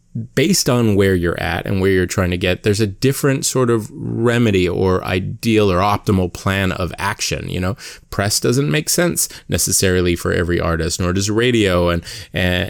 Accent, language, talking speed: American, English, 185 wpm